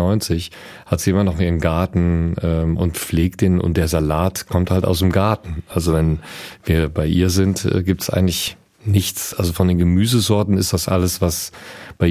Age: 40-59